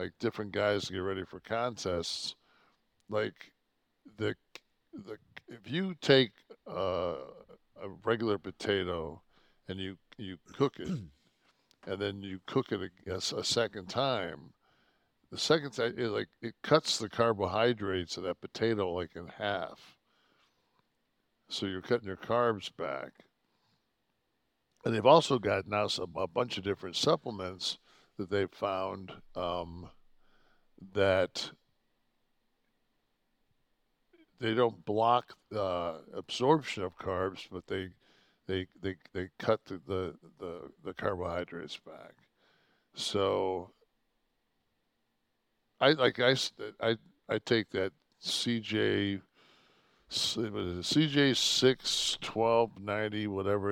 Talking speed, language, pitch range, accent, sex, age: 110 wpm, English, 95-120 Hz, American, male, 60-79